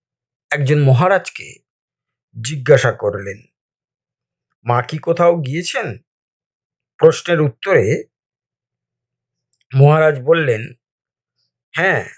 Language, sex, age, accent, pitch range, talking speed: Bengali, male, 60-79, native, 125-195 Hz, 65 wpm